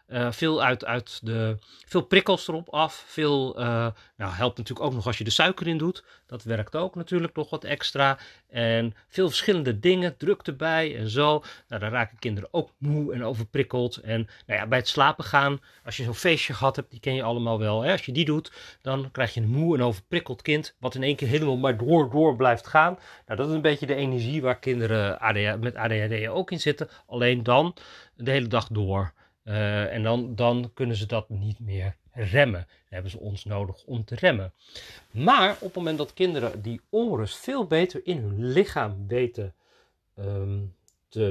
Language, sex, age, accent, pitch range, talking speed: Dutch, male, 40-59, Dutch, 115-155 Hz, 200 wpm